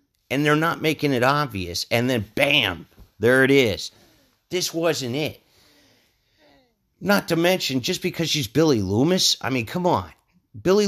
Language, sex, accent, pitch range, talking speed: English, male, American, 115-165 Hz, 155 wpm